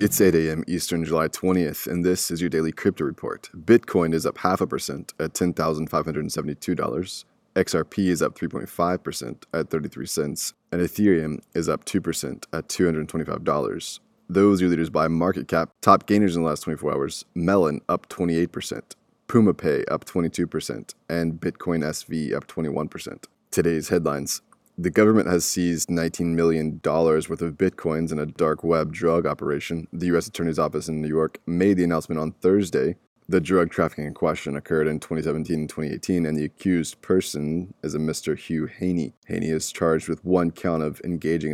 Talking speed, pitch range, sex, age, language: 170 wpm, 80-90 Hz, male, 20-39, English